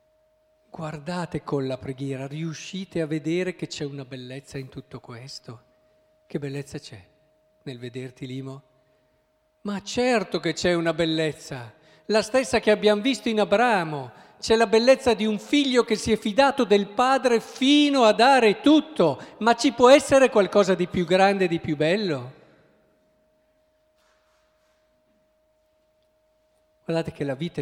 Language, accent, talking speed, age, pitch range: Italian, native, 140 wpm, 50-69, 140-215 Hz